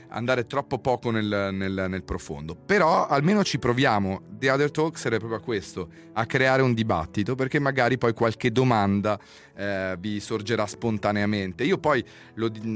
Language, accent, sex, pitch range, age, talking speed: Italian, native, male, 95-120 Hz, 30-49, 150 wpm